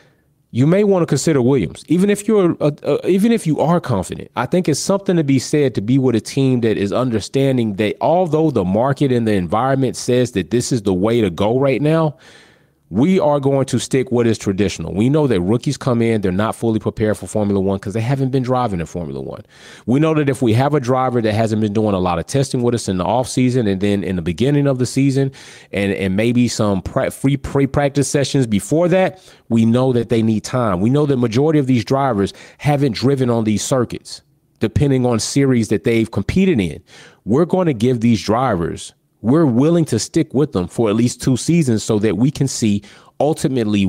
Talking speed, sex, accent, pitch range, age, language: 225 wpm, male, American, 105-140 Hz, 30-49, English